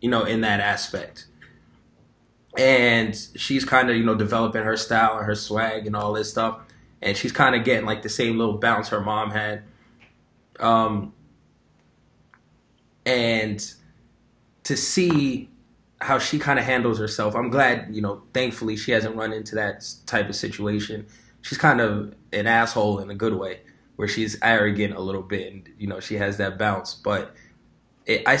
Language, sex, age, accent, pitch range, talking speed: English, male, 20-39, American, 105-120 Hz, 170 wpm